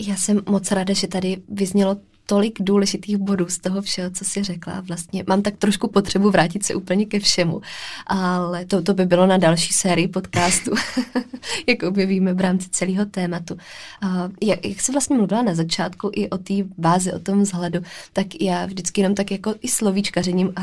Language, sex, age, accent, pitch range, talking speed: Czech, female, 20-39, native, 170-195 Hz, 185 wpm